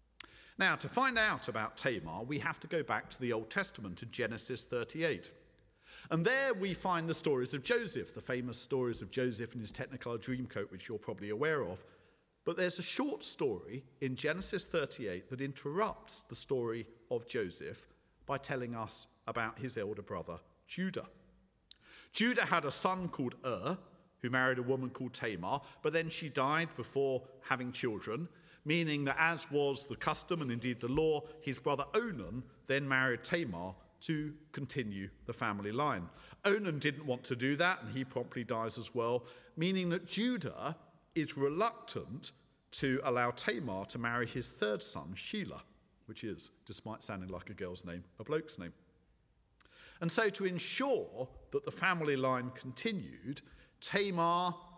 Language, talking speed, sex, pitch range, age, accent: English, 165 wpm, male, 120-165 Hz, 50-69, British